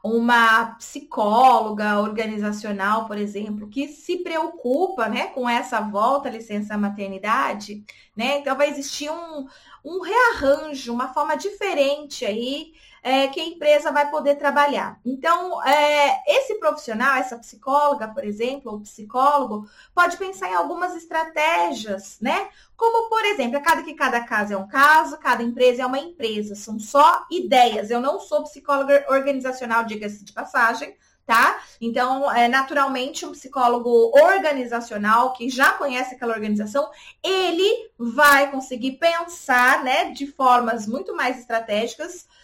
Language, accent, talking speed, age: Portuguese, Brazilian, 135 wpm, 20-39